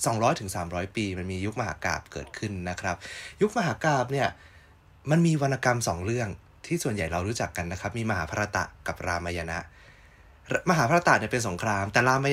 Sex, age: male, 20-39